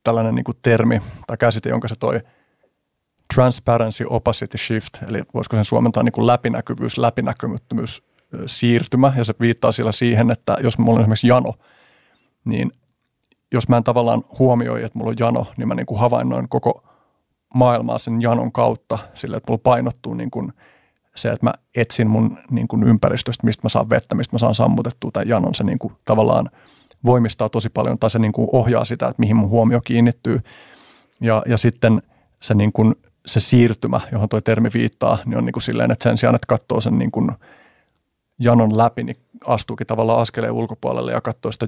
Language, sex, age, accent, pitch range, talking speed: Finnish, male, 30-49, native, 110-120 Hz, 180 wpm